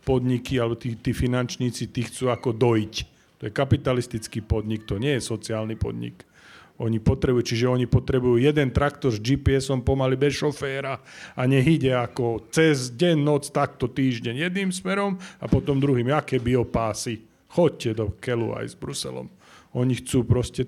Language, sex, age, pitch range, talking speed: Slovak, male, 40-59, 115-140 Hz, 155 wpm